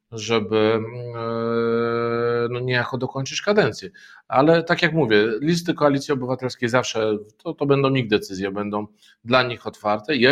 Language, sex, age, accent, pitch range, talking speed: Polish, male, 40-59, native, 110-145 Hz, 135 wpm